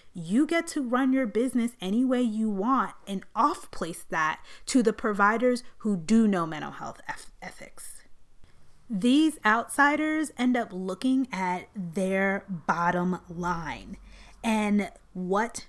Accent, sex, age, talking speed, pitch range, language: American, female, 30-49, 125 wpm, 190-250 Hz, English